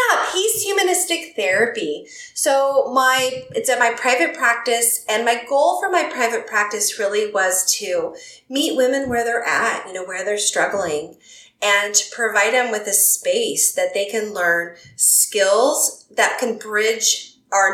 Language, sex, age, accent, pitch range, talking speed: English, female, 30-49, American, 195-310 Hz, 160 wpm